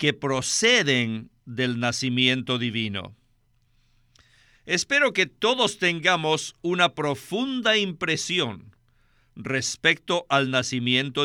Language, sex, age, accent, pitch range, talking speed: Spanish, male, 50-69, Mexican, 125-170 Hz, 80 wpm